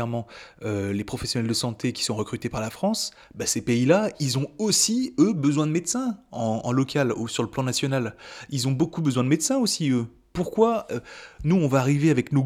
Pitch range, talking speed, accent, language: 120-180 Hz, 210 wpm, French, French